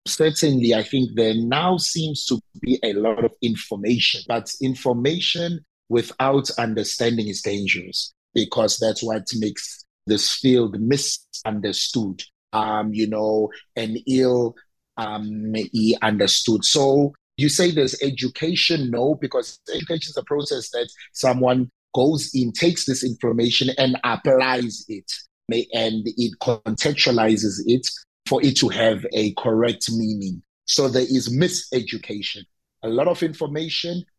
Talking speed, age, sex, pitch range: 125 wpm, 30-49, male, 110-140 Hz